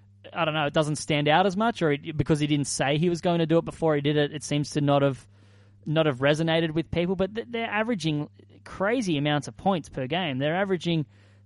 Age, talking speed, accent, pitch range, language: 20-39, 245 wpm, Australian, 130-165 Hz, English